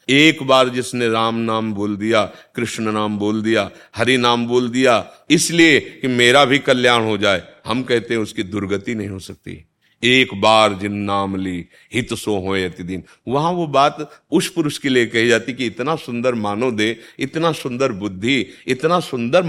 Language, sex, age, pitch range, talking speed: Hindi, male, 50-69, 105-130 Hz, 180 wpm